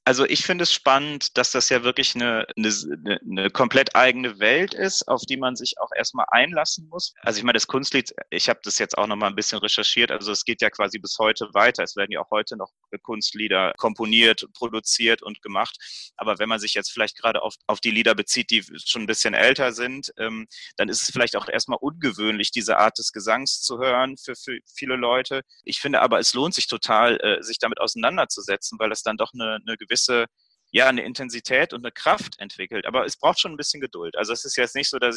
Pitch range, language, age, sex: 110-135 Hz, German, 30-49, male